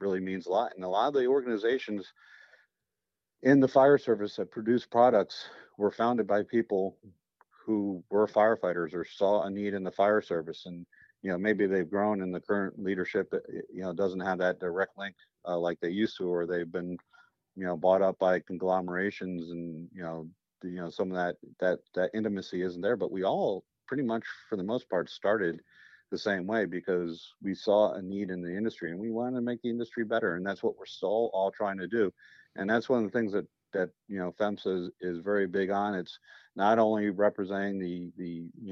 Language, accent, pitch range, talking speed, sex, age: English, American, 90-105 Hz, 210 wpm, male, 50-69